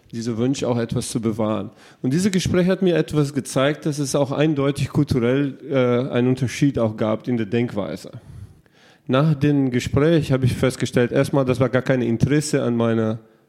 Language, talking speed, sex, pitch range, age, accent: German, 180 wpm, male, 120-145 Hz, 40-59, German